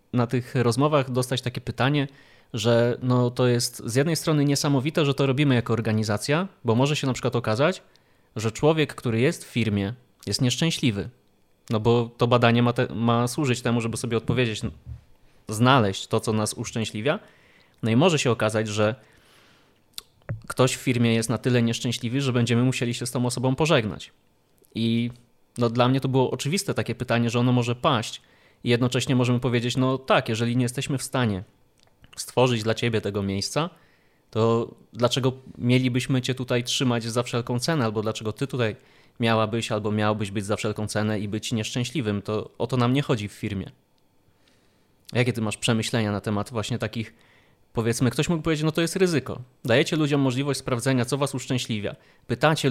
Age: 20-39